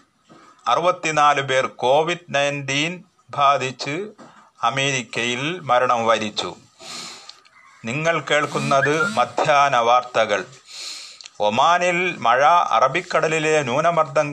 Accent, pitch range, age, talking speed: native, 120-155 Hz, 30-49, 65 wpm